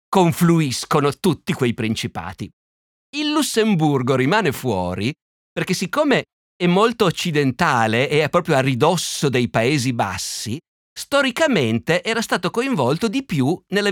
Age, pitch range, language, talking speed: 50-69, 120-185 Hz, Italian, 120 wpm